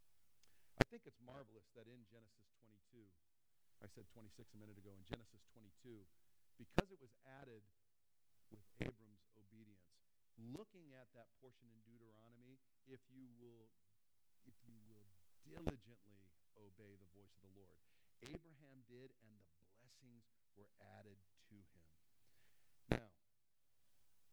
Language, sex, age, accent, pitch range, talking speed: English, male, 50-69, American, 110-145 Hz, 140 wpm